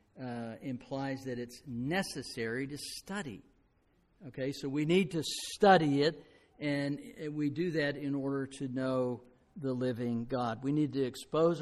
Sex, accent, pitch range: male, American, 130-165 Hz